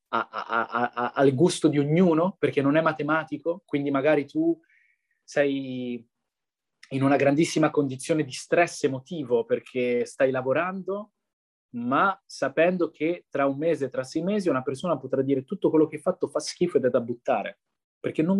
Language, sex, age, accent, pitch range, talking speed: Italian, male, 20-39, native, 130-170 Hz, 165 wpm